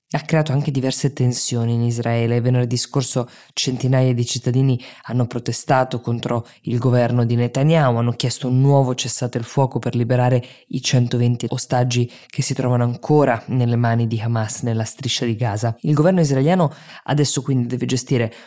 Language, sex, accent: Italian, female, native